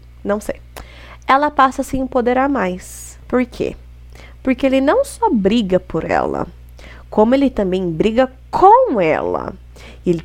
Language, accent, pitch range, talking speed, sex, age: Portuguese, Brazilian, 175-245 Hz, 140 wpm, female, 20-39